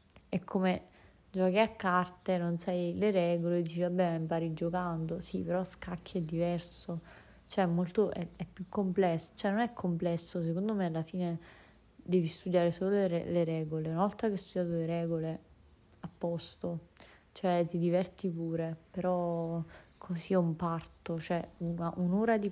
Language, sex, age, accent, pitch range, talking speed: Italian, female, 20-39, native, 165-185 Hz, 165 wpm